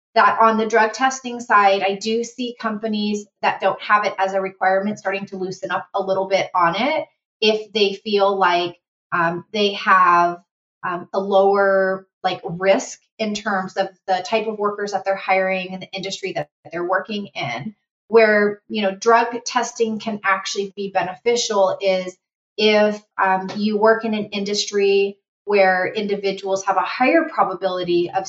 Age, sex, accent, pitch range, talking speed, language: 30-49, female, American, 190-220 Hz, 170 wpm, English